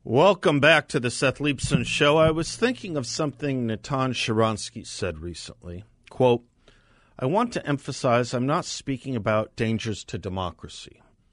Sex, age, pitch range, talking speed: male, 50-69, 110-145 Hz, 150 wpm